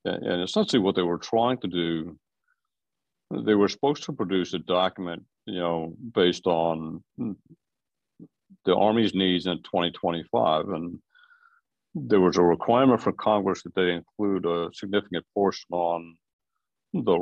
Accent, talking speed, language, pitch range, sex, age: American, 135 wpm, English, 85-105 Hz, male, 60-79